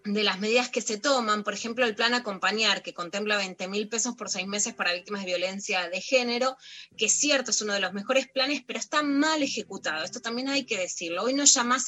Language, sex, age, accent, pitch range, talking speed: Spanish, female, 20-39, Argentinian, 195-245 Hz, 230 wpm